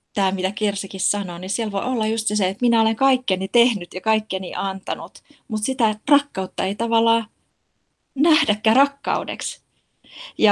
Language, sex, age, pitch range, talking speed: Finnish, female, 20-39, 185-230 Hz, 150 wpm